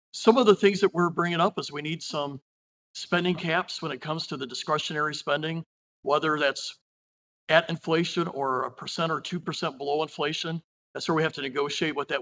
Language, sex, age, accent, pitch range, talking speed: English, male, 50-69, American, 150-180 Hz, 195 wpm